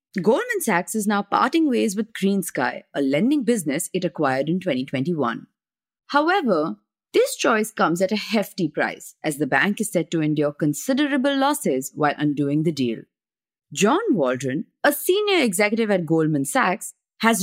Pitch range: 165-270 Hz